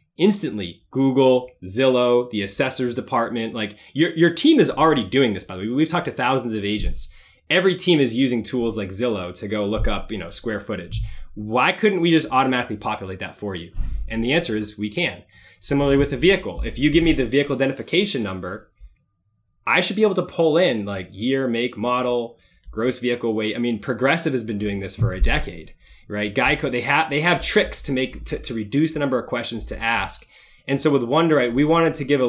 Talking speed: 215 wpm